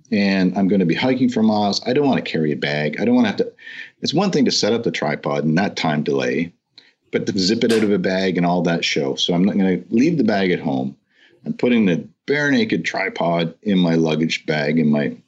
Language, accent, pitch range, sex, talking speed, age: English, American, 85-105 Hz, male, 265 wpm, 50-69